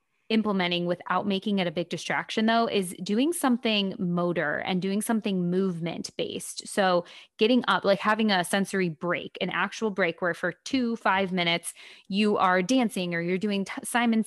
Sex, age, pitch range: female, 20-39, 180-215 Hz